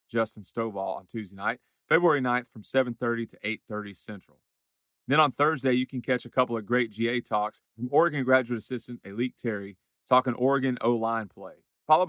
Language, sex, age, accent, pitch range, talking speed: English, male, 30-49, American, 105-130 Hz, 175 wpm